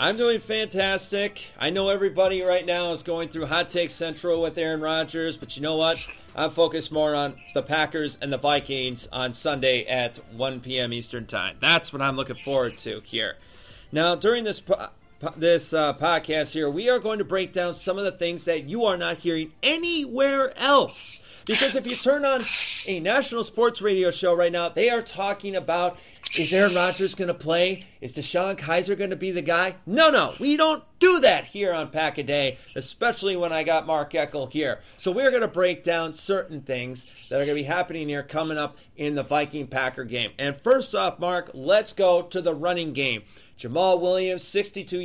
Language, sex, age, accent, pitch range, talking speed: English, male, 30-49, American, 150-195 Hz, 200 wpm